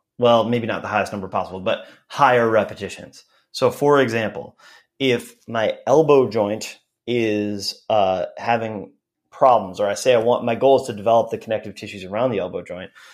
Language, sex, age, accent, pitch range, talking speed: English, male, 30-49, American, 105-135 Hz, 175 wpm